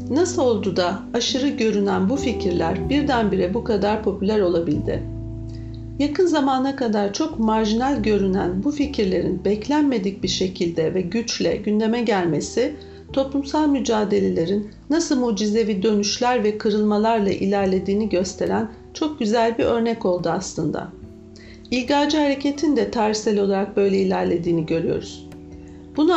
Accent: native